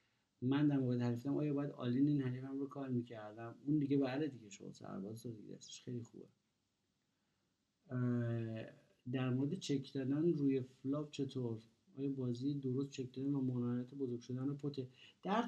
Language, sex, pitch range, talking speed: Persian, male, 120-150 Hz, 160 wpm